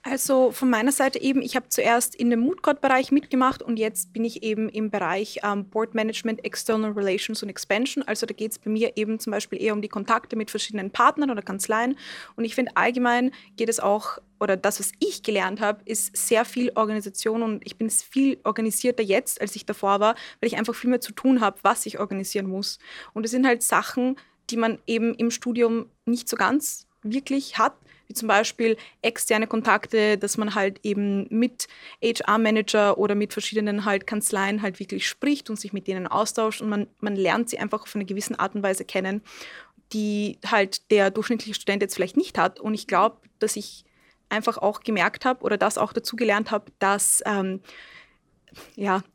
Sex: female